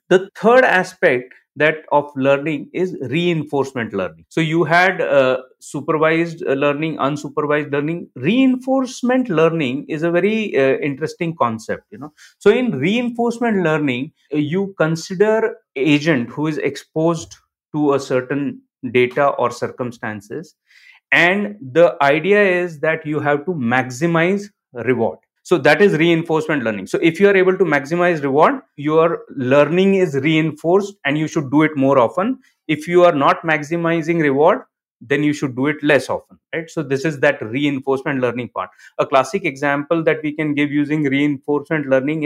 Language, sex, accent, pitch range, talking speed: English, male, Indian, 135-175 Hz, 155 wpm